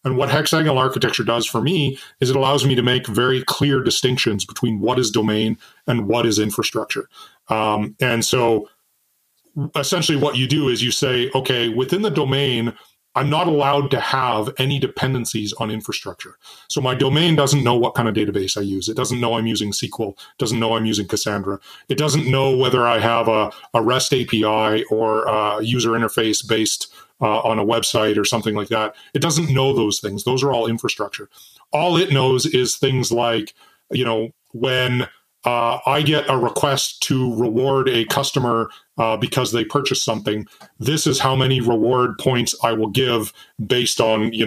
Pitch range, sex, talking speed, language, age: 110-140 Hz, male, 185 wpm, English, 40-59